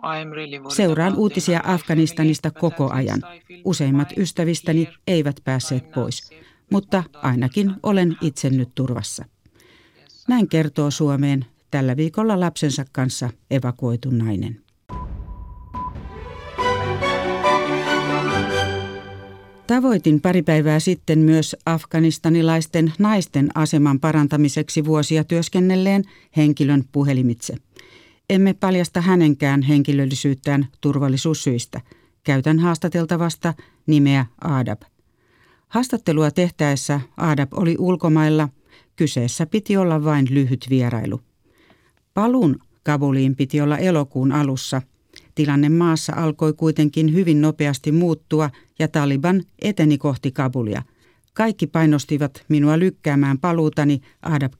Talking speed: 90 wpm